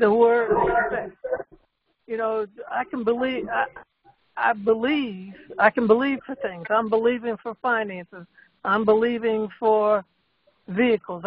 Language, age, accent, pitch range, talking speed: English, 60-79, American, 200-245 Hz, 120 wpm